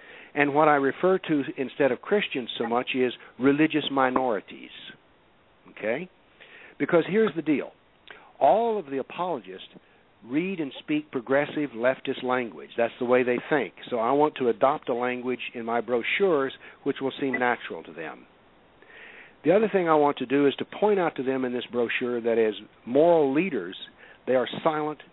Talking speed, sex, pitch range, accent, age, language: 170 wpm, male, 125-155 Hz, American, 60-79, English